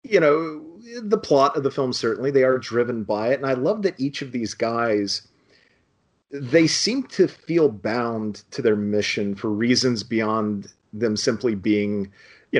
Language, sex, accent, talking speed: English, male, American, 170 wpm